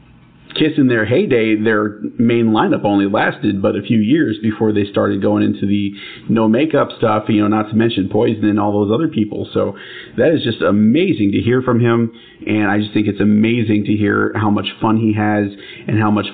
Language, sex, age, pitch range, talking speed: English, male, 40-59, 105-115 Hz, 215 wpm